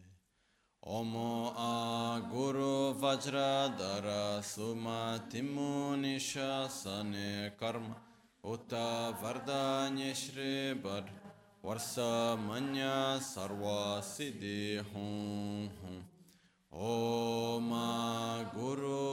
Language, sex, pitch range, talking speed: Italian, male, 105-135 Hz, 50 wpm